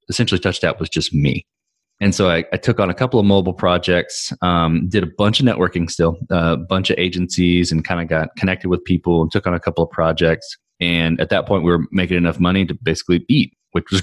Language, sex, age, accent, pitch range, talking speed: English, male, 20-39, American, 85-100 Hz, 245 wpm